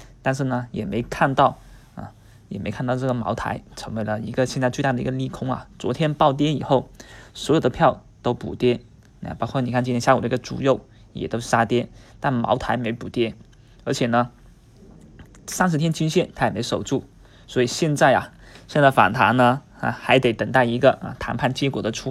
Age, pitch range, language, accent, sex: 20-39, 115-135 Hz, Chinese, native, male